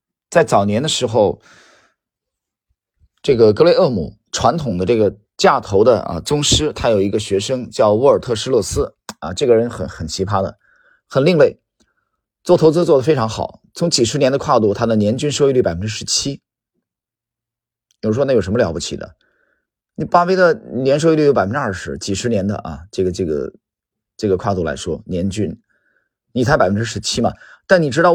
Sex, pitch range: male, 105-165 Hz